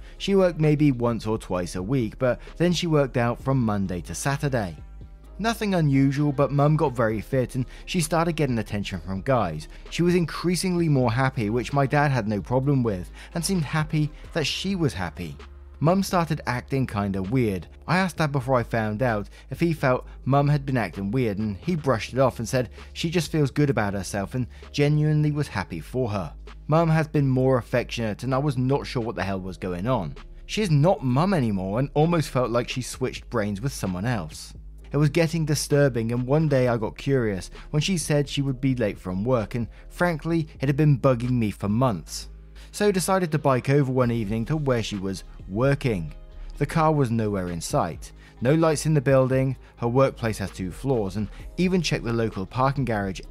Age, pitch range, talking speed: 20-39, 105-150 Hz, 205 wpm